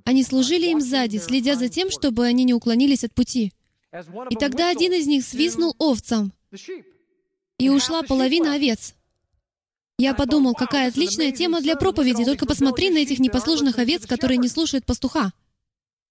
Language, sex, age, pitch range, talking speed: Russian, female, 20-39, 235-310 Hz, 155 wpm